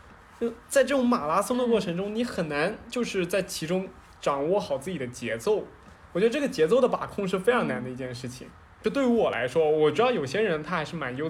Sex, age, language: male, 20-39, Chinese